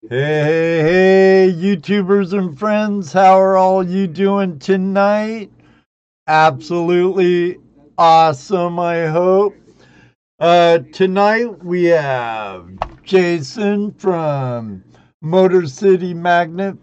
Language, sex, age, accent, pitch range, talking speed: English, male, 60-79, American, 130-190 Hz, 90 wpm